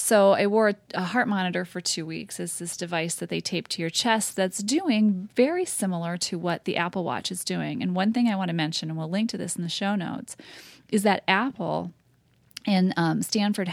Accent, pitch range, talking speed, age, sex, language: American, 170-200 Hz, 225 wpm, 30-49, female, English